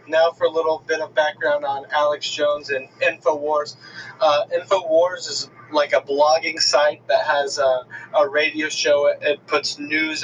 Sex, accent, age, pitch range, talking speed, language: male, American, 20-39, 140-165 Hz, 165 wpm, English